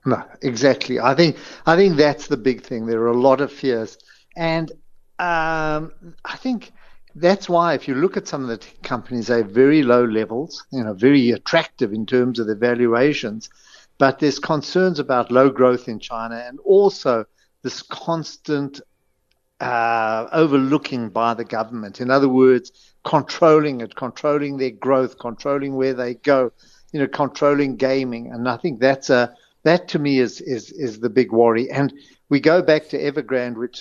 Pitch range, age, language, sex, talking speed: 120-145 Hz, 60-79, English, male, 175 wpm